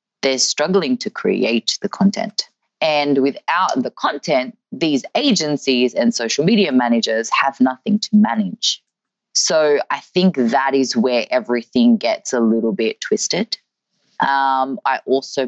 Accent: Australian